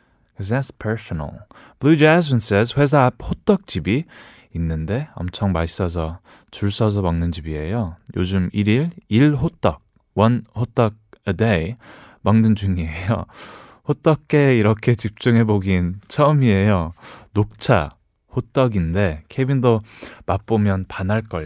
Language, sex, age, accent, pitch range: Korean, male, 20-39, native, 95-125 Hz